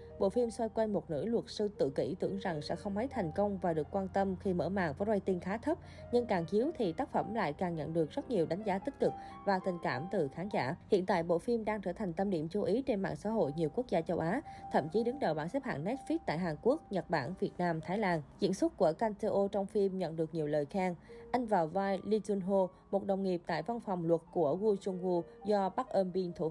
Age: 20-39